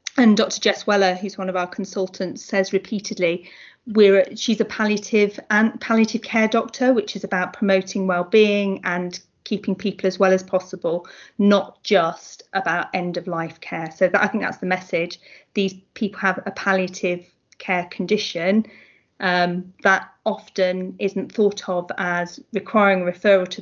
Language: English